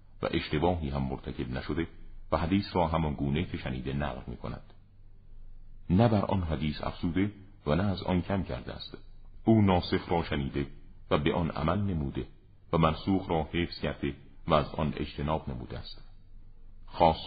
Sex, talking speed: male, 160 wpm